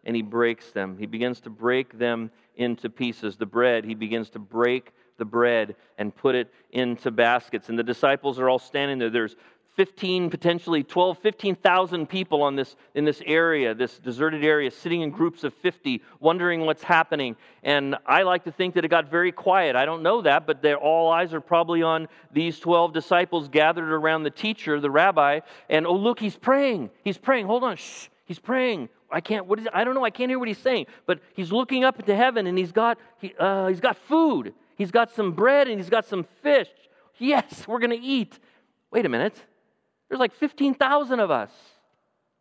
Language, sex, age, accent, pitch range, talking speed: English, male, 40-59, American, 140-195 Hz, 200 wpm